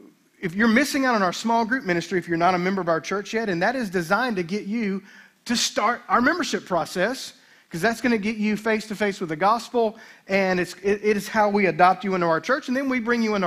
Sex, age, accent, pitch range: male, 40-59, American, 175-225 Hz